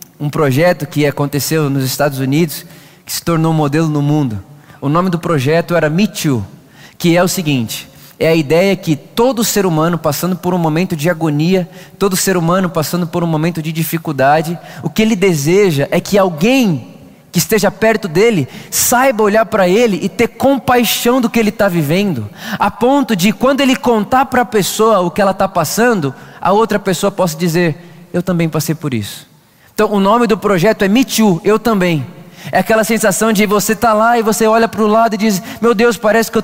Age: 20-39